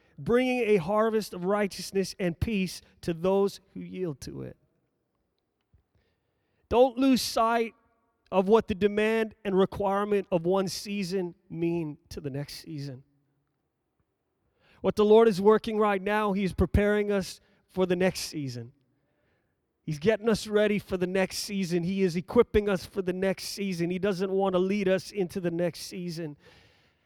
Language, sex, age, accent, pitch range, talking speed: English, male, 30-49, American, 150-190 Hz, 155 wpm